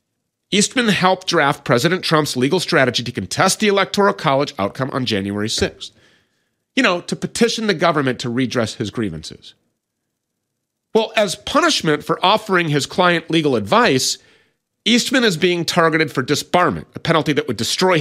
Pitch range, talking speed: 120-180 Hz, 155 wpm